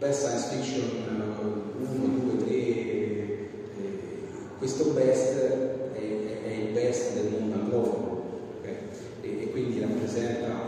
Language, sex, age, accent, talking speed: Italian, male, 40-59, native, 110 wpm